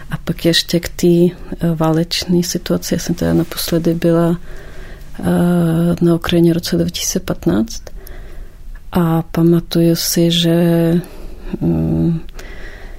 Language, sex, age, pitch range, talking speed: Czech, female, 40-59, 160-175 Hz, 105 wpm